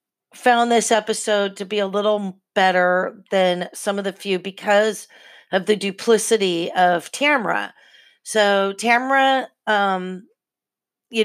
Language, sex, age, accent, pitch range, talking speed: English, female, 40-59, American, 190-235 Hz, 125 wpm